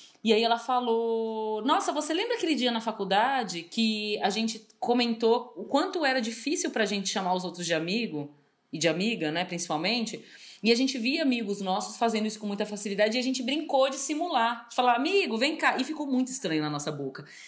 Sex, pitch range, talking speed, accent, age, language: female, 185-250 Hz, 205 wpm, Brazilian, 30-49, Portuguese